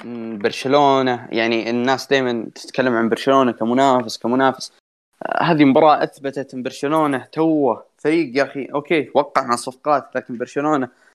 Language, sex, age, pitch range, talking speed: Arabic, male, 20-39, 115-150 Hz, 125 wpm